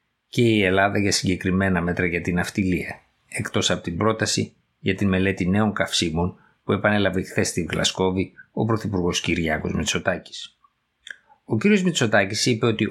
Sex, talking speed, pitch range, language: male, 150 wpm, 90-115 Hz, Greek